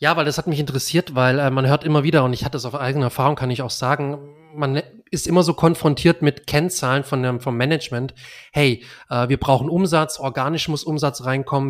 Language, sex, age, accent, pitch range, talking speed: German, male, 30-49, German, 130-155 Hz, 215 wpm